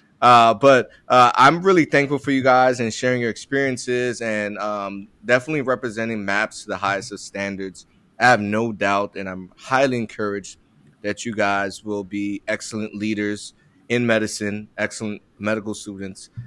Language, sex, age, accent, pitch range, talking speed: English, male, 20-39, American, 100-115 Hz, 155 wpm